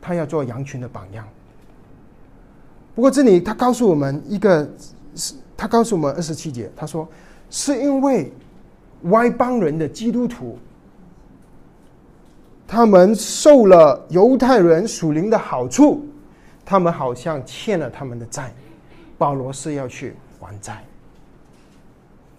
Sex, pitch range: male, 135-195 Hz